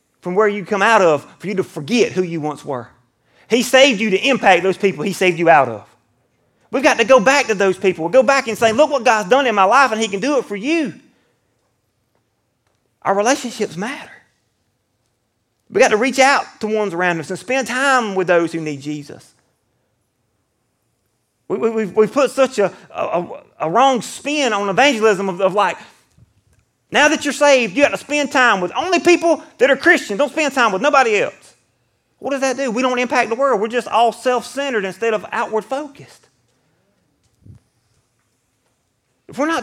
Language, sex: English, male